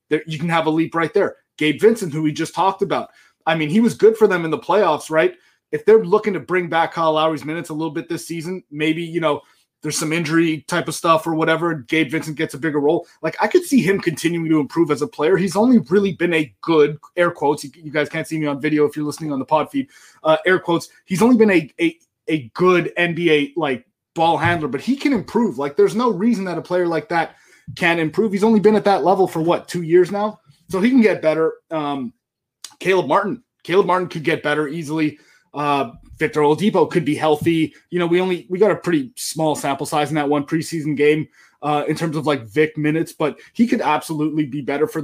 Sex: male